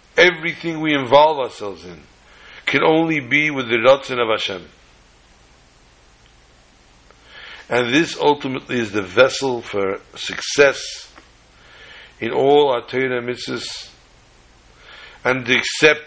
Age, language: 60-79, English